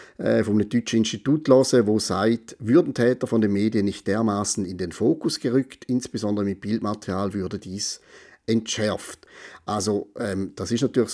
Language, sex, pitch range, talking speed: German, male, 100-130 Hz, 150 wpm